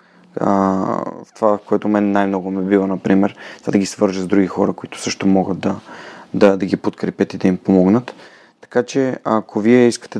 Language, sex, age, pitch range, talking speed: Bulgarian, male, 30-49, 100-120 Hz, 190 wpm